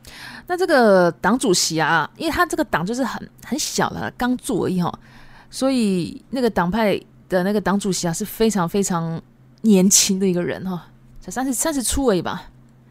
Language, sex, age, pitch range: Japanese, female, 20-39, 175-260 Hz